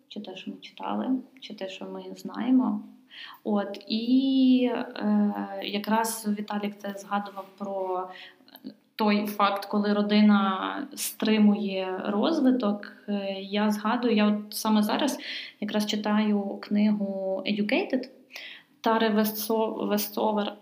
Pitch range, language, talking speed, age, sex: 200-250 Hz, Ukrainian, 110 wpm, 20-39, female